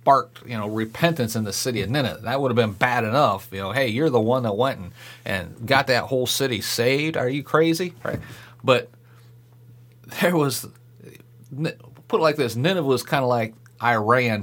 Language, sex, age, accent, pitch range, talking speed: English, male, 40-59, American, 115-150 Hz, 195 wpm